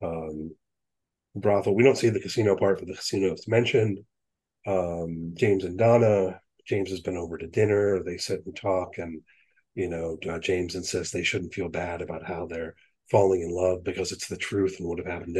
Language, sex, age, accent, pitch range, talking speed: English, male, 40-59, American, 95-135 Hz, 200 wpm